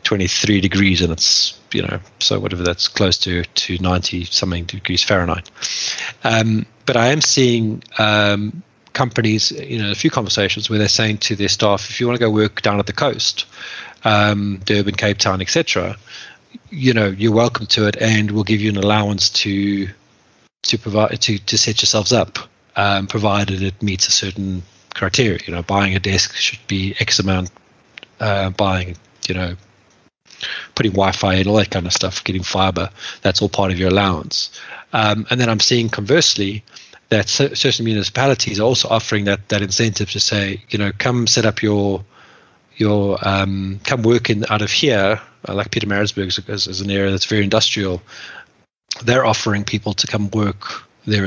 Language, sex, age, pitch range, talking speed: English, male, 30-49, 95-110 Hz, 180 wpm